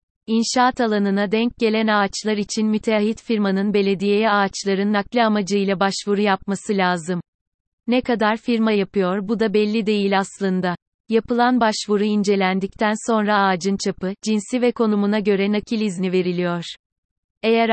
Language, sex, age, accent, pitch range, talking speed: Turkish, female, 30-49, native, 195-225 Hz, 130 wpm